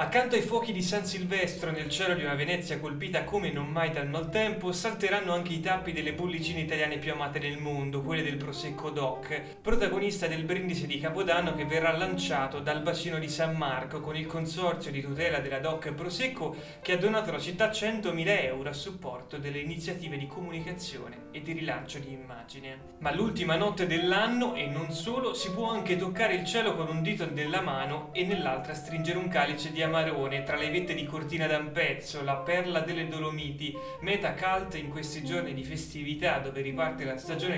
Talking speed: 190 wpm